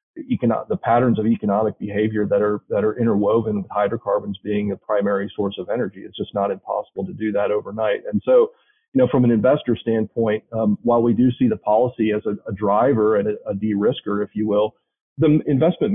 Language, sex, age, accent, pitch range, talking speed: English, male, 40-59, American, 105-125 Hz, 205 wpm